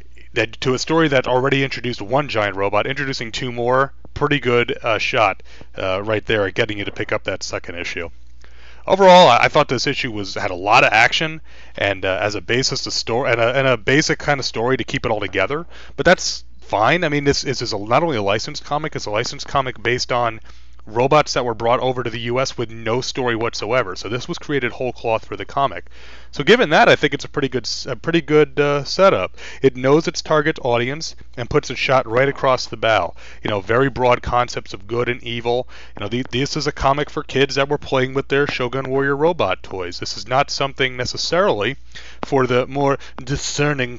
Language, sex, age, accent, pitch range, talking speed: English, male, 30-49, American, 120-145 Hz, 220 wpm